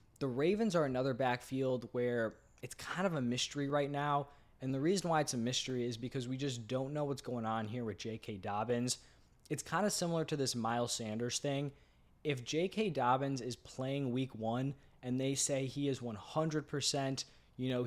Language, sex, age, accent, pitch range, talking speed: English, male, 20-39, American, 120-145 Hz, 190 wpm